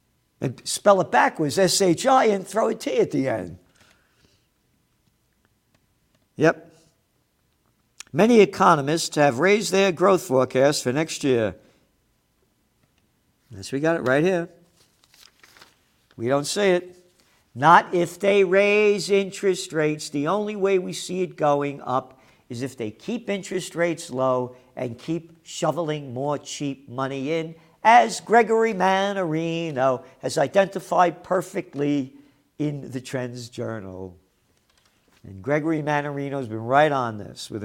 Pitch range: 140-210 Hz